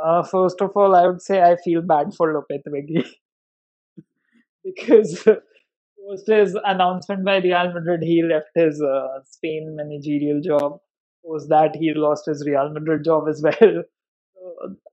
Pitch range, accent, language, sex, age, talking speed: 155-195 Hz, Indian, English, male, 20-39, 155 wpm